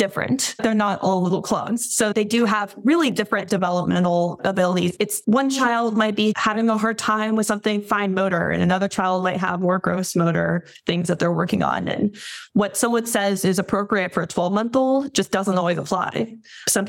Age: 20-39